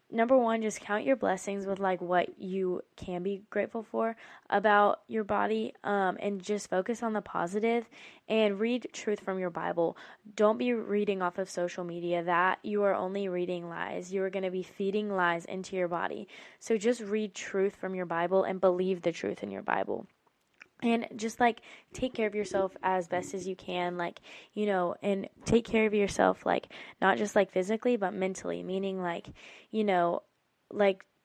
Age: 10-29